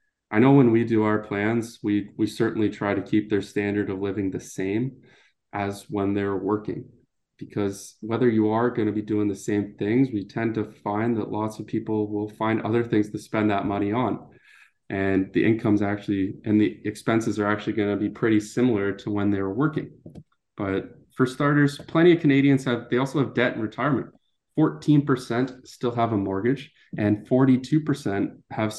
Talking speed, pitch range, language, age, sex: 190 wpm, 105-120 Hz, English, 20-39, male